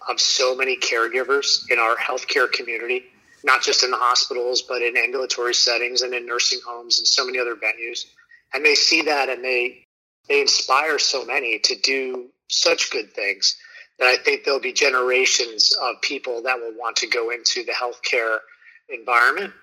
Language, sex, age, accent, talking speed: English, male, 30-49, American, 175 wpm